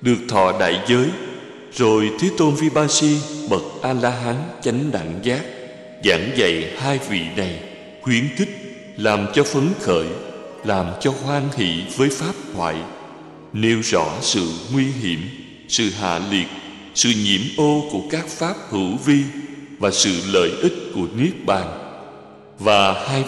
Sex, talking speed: male, 150 wpm